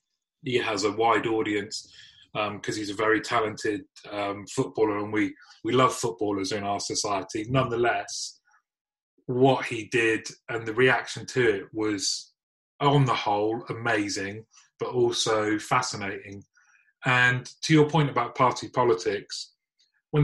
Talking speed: 135 wpm